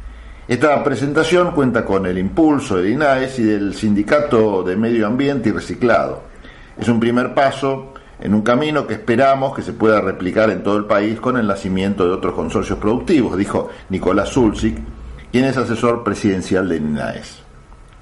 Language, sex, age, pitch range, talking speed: Spanish, male, 50-69, 100-130 Hz, 165 wpm